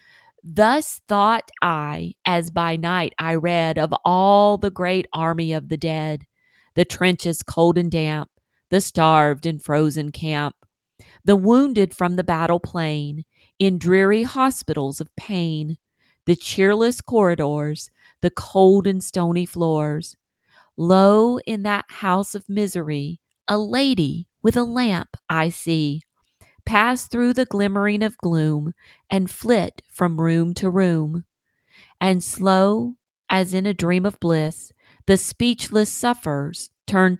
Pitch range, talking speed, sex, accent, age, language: 160-200 Hz, 130 wpm, female, American, 40-59, English